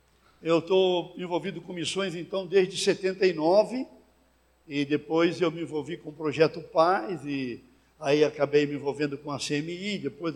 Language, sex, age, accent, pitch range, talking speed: Portuguese, male, 60-79, Brazilian, 140-175 Hz, 150 wpm